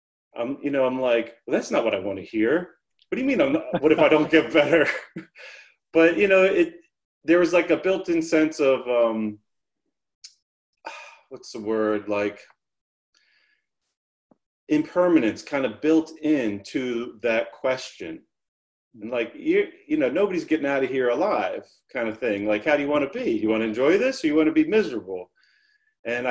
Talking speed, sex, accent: 185 wpm, male, American